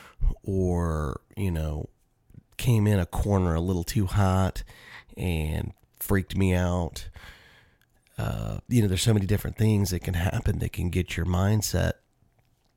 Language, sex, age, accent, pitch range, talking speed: English, male, 30-49, American, 90-110 Hz, 145 wpm